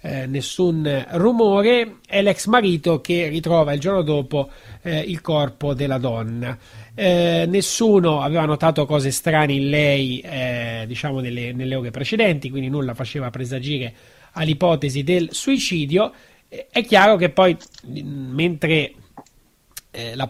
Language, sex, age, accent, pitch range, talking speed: Italian, male, 30-49, native, 130-160 Hz, 135 wpm